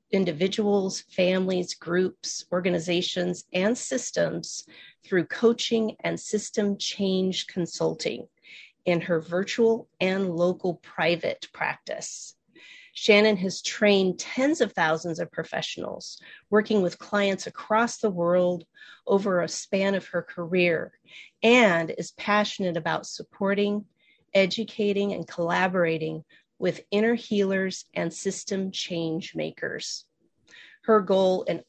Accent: American